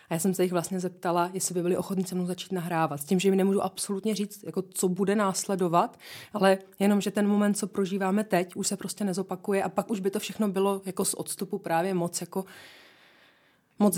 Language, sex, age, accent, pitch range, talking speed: Czech, female, 20-39, native, 170-190 Hz, 225 wpm